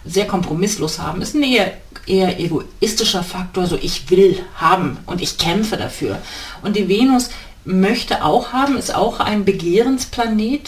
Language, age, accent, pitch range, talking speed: German, 40-59, German, 160-195 Hz, 155 wpm